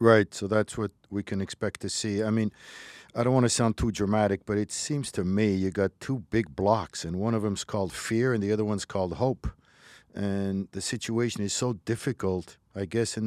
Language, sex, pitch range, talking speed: English, male, 105-135 Hz, 220 wpm